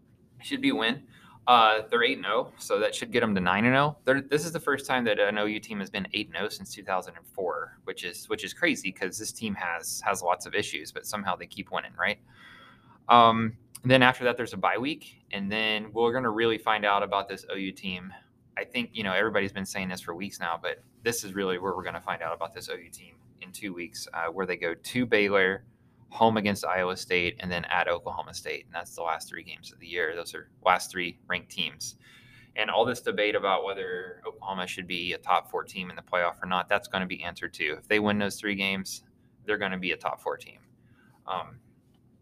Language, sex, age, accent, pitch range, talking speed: English, male, 20-39, American, 95-125 Hz, 240 wpm